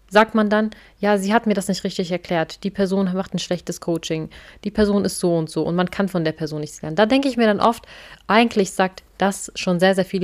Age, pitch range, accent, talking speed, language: 30-49, 175-200 Hz, German, 260 wpm, German